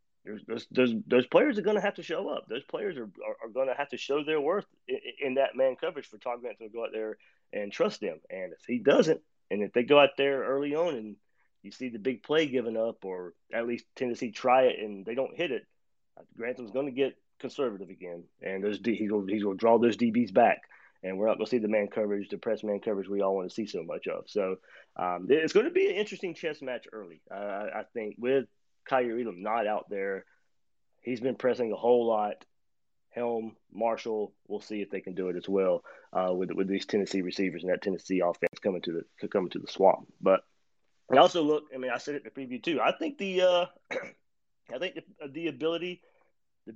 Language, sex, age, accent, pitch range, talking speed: English, male, 30-49, American, 105-155 Hz, 230 wpm